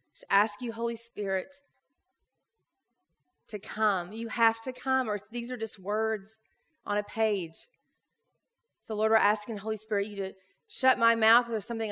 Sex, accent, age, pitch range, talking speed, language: female, American, 30-49, 215-265 Hz, 165 wpm, English